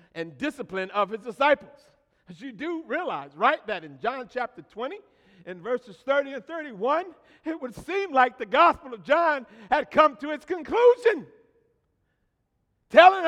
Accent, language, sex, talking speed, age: American, English, male, 155 wpm, 60-79